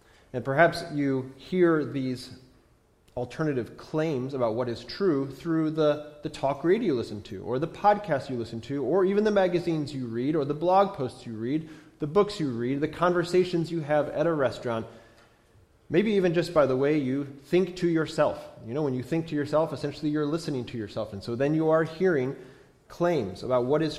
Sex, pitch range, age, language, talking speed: male, 120-170 Hz, 30-49, English, 200 wpm